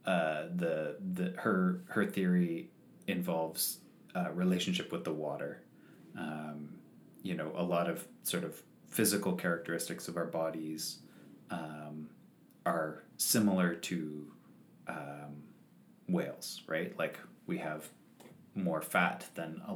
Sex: male